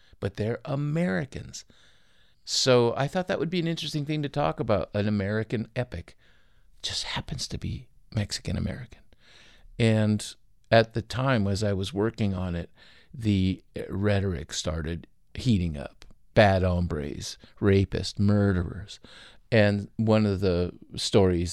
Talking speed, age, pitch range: 130 wpm, 50-69, 95-115 Hz